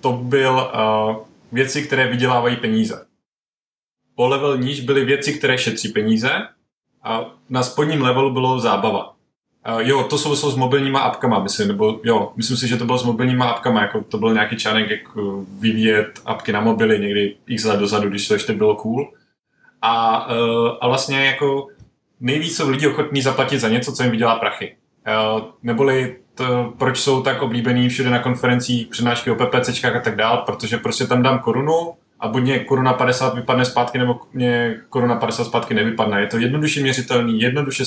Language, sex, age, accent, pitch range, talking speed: Czech, male, 20-39, native, 115-135 Hz, 175 wpm